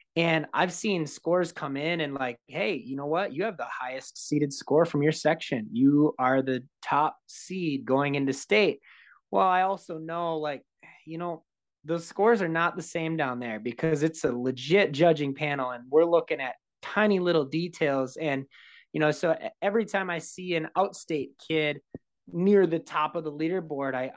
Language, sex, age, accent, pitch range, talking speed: English, male, 20-39, American, 140-170 Hz, 185 wpm